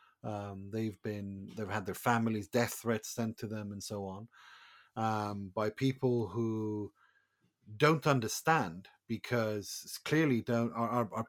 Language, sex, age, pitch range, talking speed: English, male, 30-49, 105-125 Hz, 145 wpm